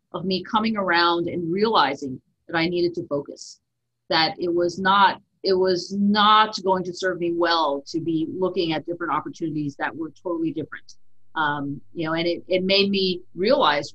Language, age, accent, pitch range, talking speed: English, 40-59, American, 160-195 Hz, 175 wpm